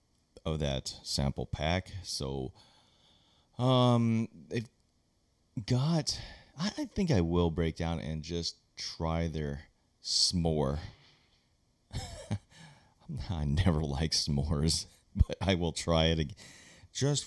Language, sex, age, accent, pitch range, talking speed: English, male, 30-49, American, 80-105 Hz, 105 wpm